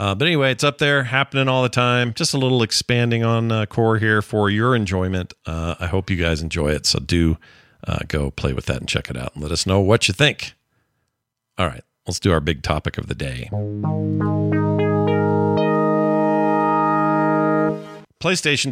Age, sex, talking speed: 50-69, male, 185 wpm